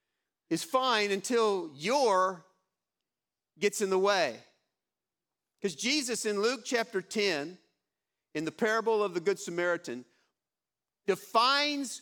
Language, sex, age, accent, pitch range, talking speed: English, male, 50-69, American, 190-250 Hz, 110 wpm